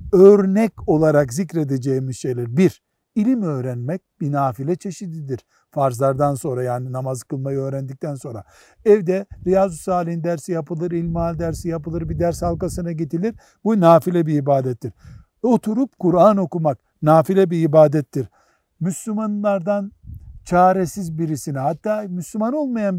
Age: 60-79